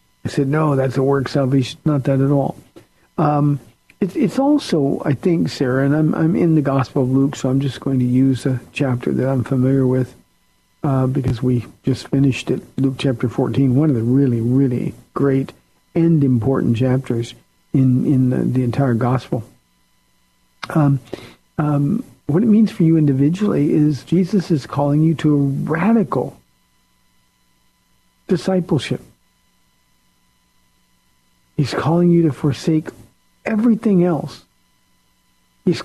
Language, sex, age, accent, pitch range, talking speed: English, male, 50-69, American, 125-150 Hz, 145 wpm